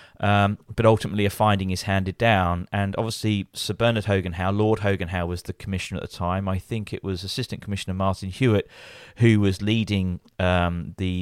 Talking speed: 195 wpm